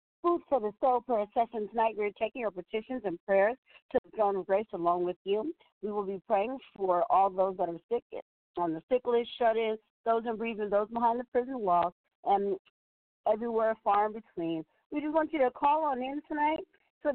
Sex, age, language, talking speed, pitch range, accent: female, 50-69, English, 205 wpm, 205-270 Hz, American